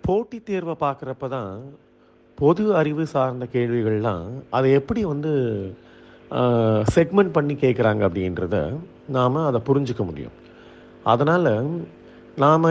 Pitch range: 115-165 Hz